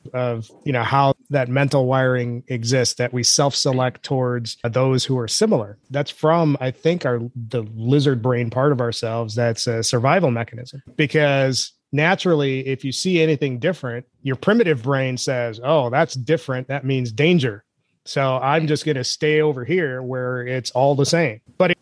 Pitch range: 125-145 Hz